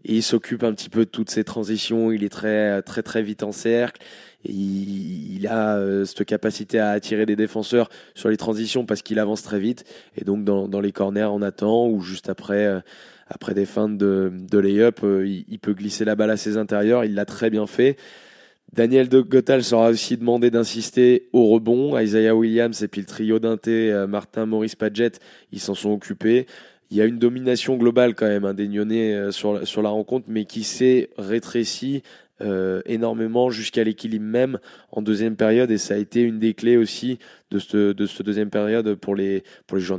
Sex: male